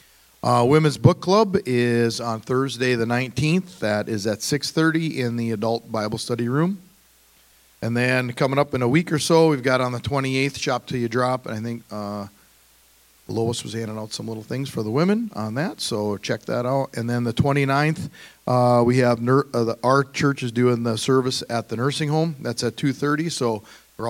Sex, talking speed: male, 205 wpm